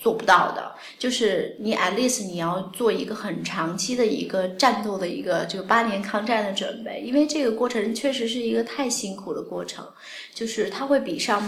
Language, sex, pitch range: Chinese, female, 195-230 Hz